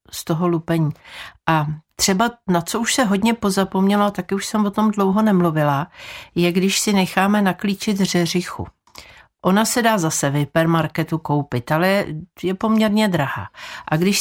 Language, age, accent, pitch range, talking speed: Czech, 50-69, native, 155-200 Hz, 155 wpm